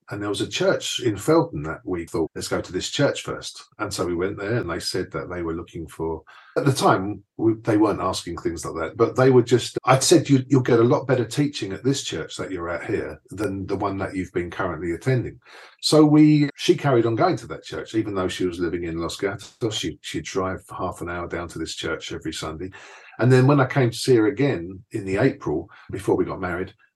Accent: British